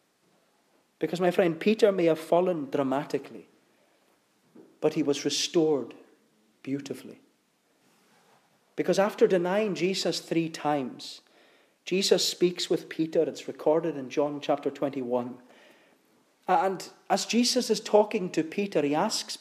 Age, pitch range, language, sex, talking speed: 40-59, 160-225 Hz, English, male, 120 wpm